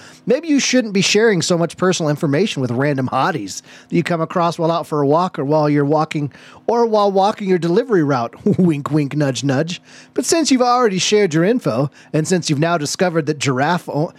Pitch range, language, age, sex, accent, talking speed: 145-205 Hz, English, 30-49, male, American, 210 wpm